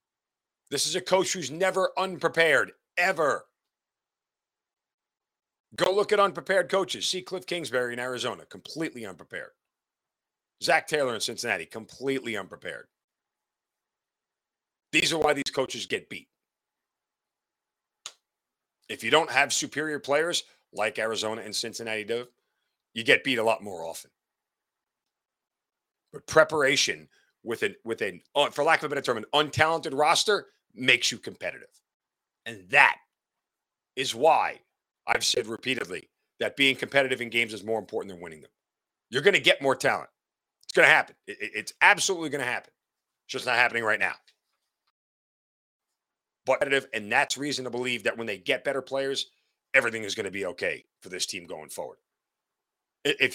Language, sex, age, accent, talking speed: English, male, 40-59, American, 150 wpm